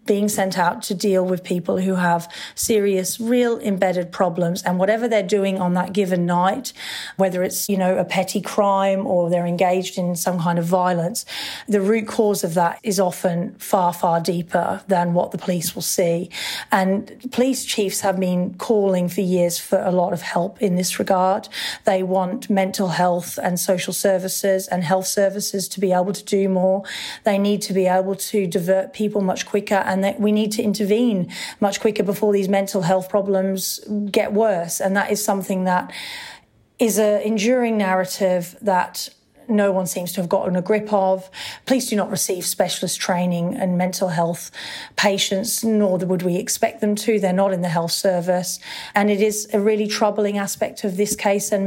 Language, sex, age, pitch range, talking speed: English, female, 40-59, 185-205 Hz, 185 wpm